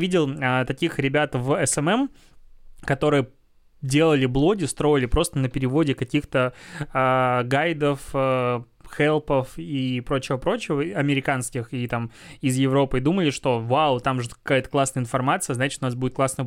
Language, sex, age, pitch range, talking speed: Russian, male, 20-39, 130-150 Hz, 140 wpm